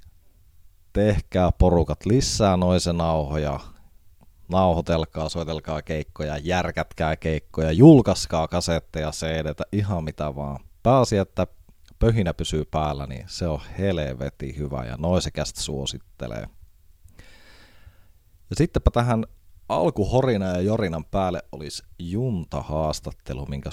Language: Finnish